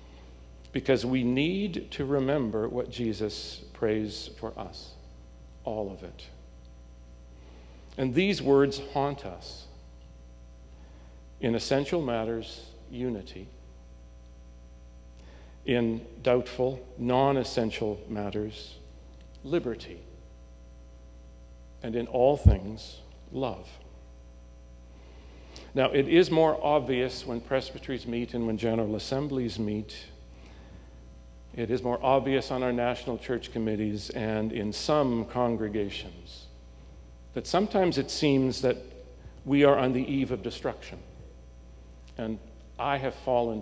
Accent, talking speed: American, 100 wpm